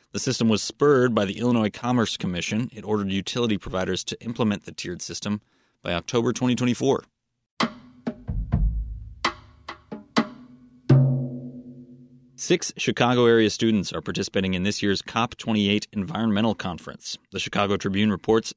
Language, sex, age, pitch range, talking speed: English, male, 30-49, 100-125 Hz, 115 wpm